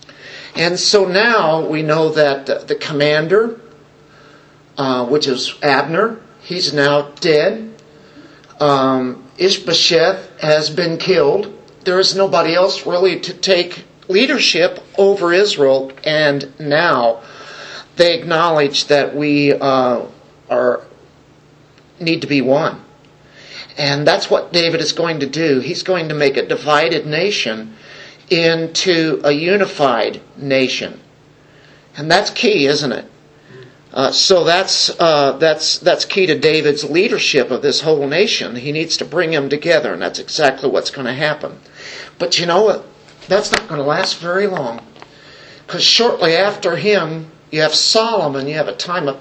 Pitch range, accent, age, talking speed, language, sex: 145-180 Hz, American, 50-69, 140 wpm, English, male